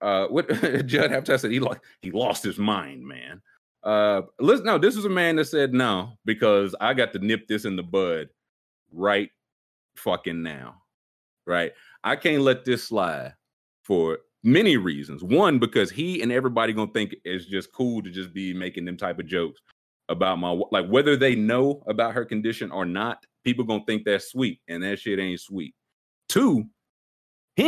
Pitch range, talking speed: 95-125 Hz, 185 wpm